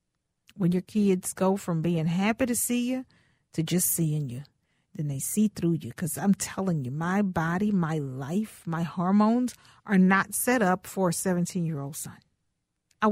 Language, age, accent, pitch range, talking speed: English, 40-59, American, 180-220 Hz, 175 wpm